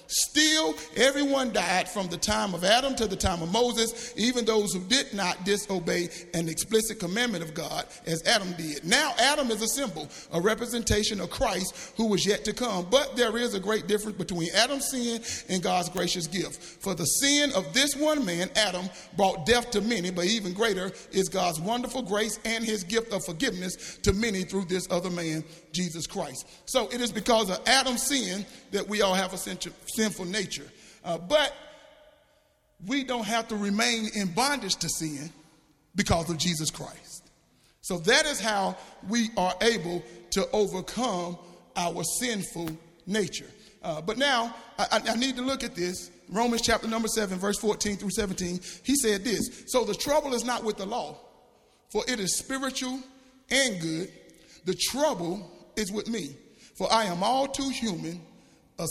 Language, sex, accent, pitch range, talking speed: English, male, American, 175-240 Hz, 180 wpm